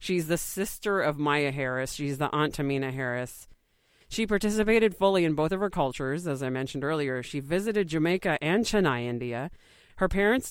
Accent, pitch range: American, 140-190 Hz